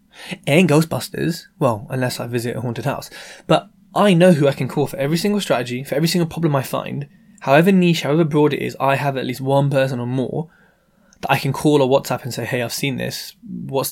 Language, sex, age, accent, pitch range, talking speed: English, male, 20-39, British, 130-175 Hz, 230 wpm